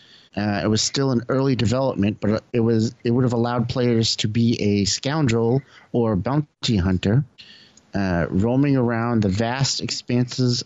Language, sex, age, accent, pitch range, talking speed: English, male, 30-49, American, 110-130 Hz, 160 wpm